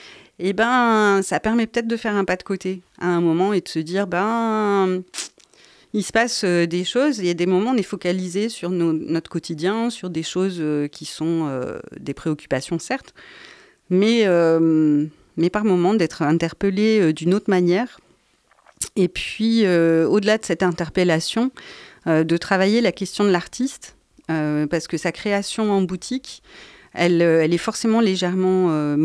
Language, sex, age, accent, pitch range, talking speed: French, female, 30-49, French, 160-210 Hz, 160 wpm